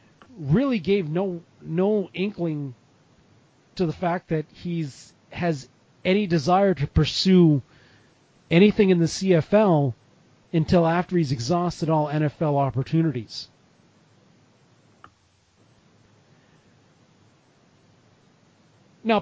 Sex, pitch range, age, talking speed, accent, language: male, 145-180 Hz, 40-59, 85 wpm, American, English